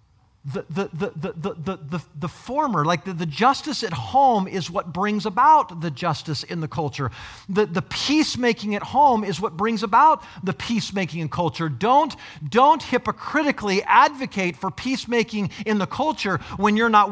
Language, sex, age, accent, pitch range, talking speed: English, male, 40-59, American, 155-225 Hz, 170 wpm